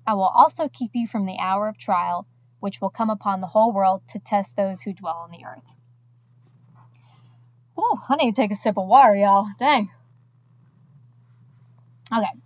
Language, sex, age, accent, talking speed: English, female, 20-39, American, 170 wpm